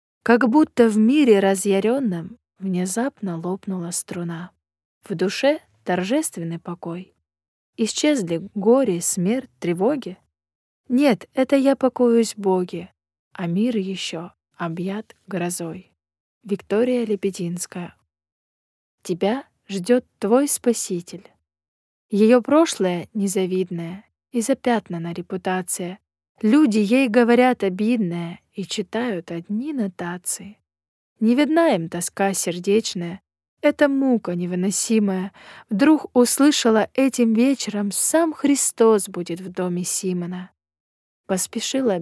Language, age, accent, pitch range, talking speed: Russian, 20-39, native, 175-235 Hz, 95 wpm